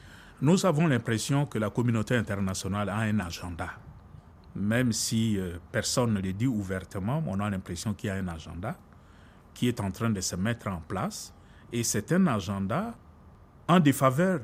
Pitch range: 95-145 Hz